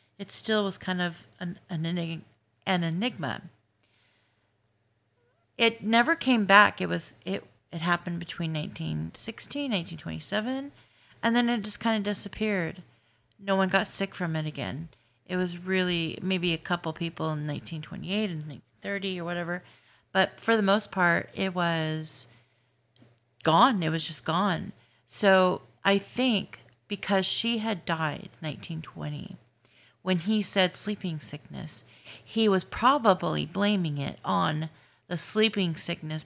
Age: 40-59